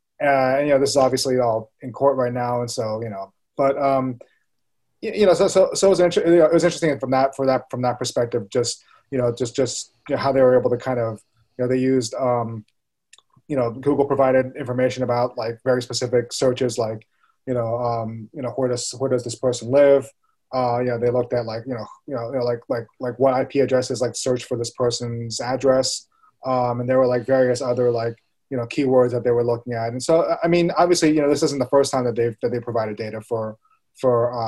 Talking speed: 225 wpm